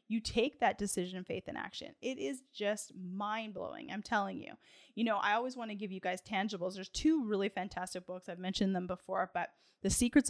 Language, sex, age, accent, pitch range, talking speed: English, female, 10-29, American, 190-225 Hz, 215 wpm